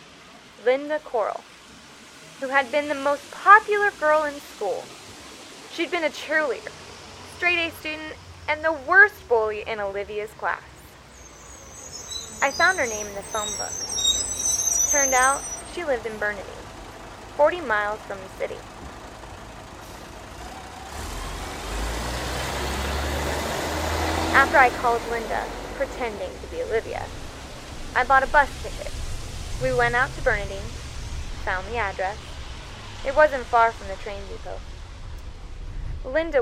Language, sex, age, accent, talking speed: English, female, 10-29, American, 120 wpm